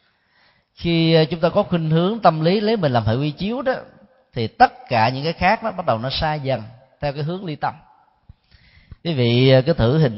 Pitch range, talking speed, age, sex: 110-150 Hz, 220 wpm, 20-39, male